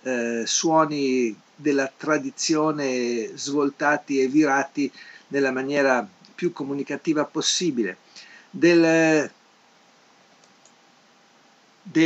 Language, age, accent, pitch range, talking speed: Italian, 50-69, native, 125-160 Hz, 65 wpm